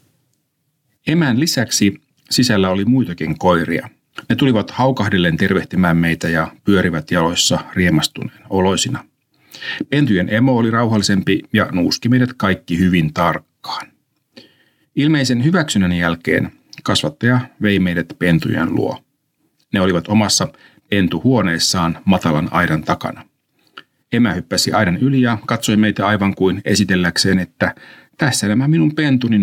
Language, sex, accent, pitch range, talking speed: Finnish, male, native, 90-120 Hz, 115 wpm